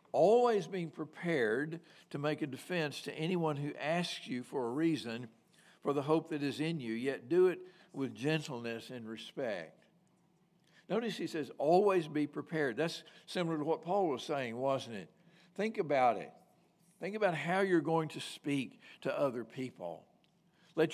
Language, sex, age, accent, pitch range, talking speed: English, male, 60-79, American, 145-180 Hz, 165 wpm